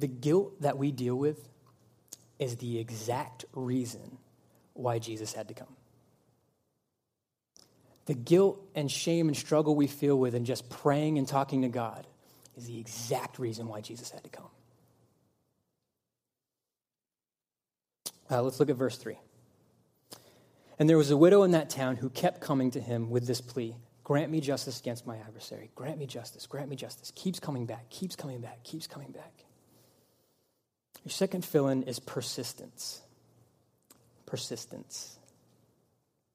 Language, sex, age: English, male, 20-39